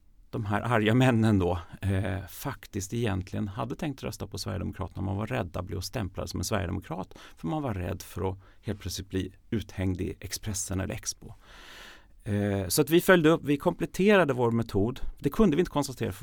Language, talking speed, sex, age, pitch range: Swedish, 190 wpm, male, 40-59, 95-130 Hz